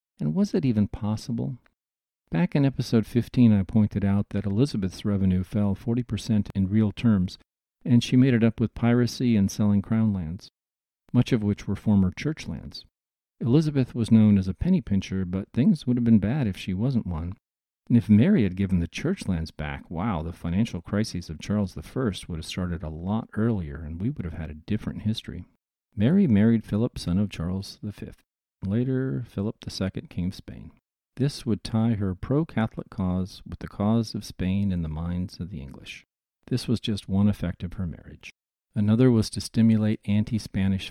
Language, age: English, 40-59